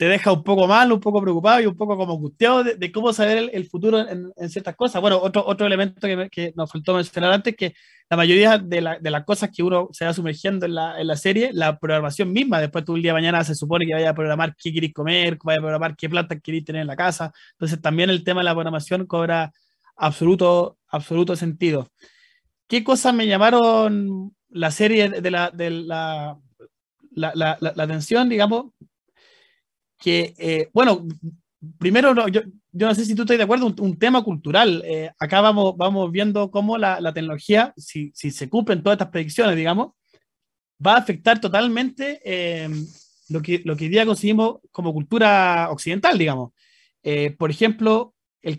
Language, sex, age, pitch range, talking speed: Spanish, male, 30-49, 160-215 Hz, 205 wpm